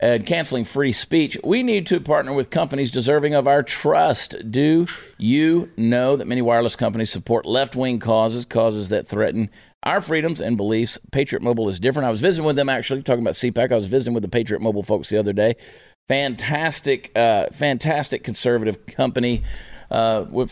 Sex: male